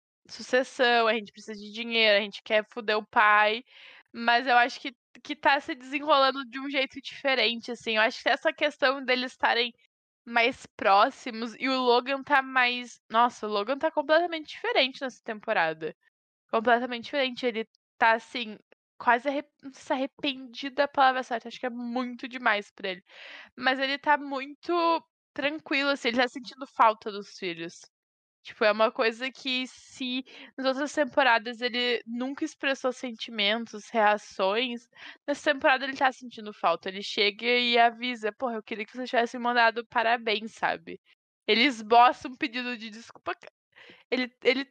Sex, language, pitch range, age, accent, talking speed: female, Portuguese, 225-275 Hz, 10-29, Brazilian, 160 wpm